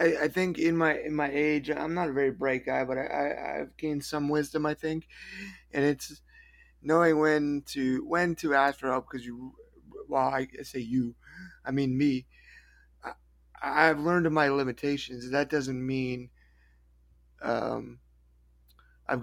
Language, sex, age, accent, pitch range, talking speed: English, male, 20-39, American, 125-150 Hz, 160 wpm